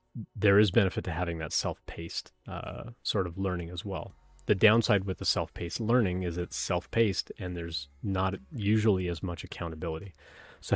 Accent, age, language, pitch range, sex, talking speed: American, 30-49, English, 85-100 Hz, male, 160 wpm